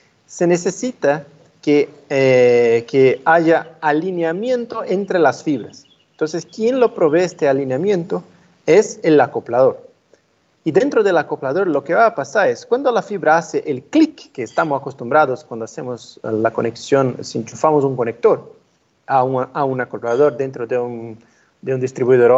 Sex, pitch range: male, 135-230 Hz